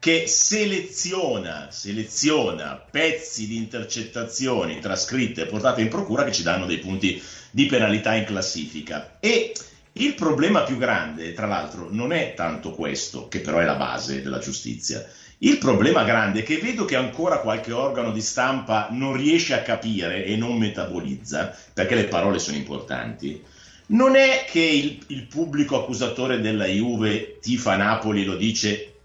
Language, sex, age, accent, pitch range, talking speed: Italian, male, 50-69, native, 105-160 Hz, 155 wpm